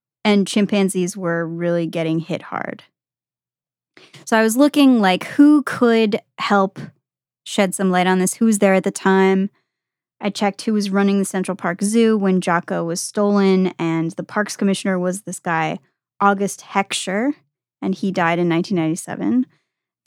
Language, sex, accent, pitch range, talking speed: English, female, American, 175-210 Hz, 160 wpm